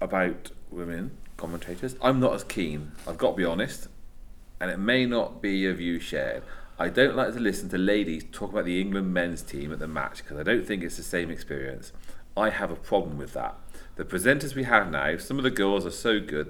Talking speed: 225 wpm